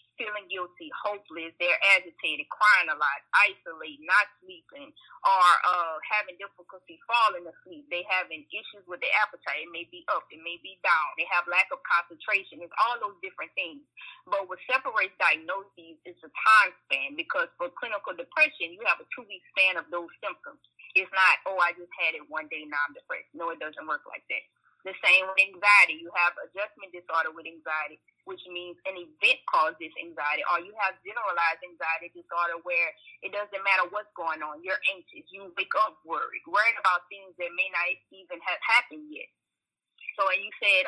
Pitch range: 175-255 Hz